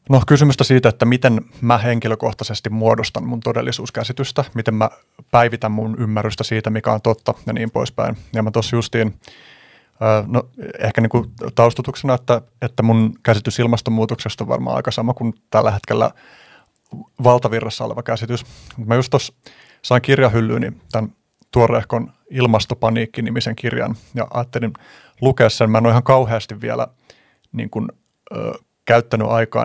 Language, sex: Finnish, male